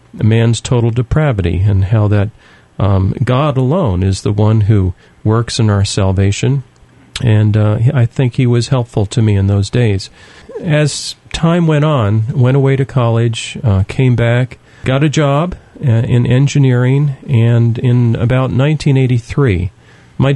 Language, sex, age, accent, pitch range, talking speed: English, male, 40-59, American, 110-130 Hz, 145 wpm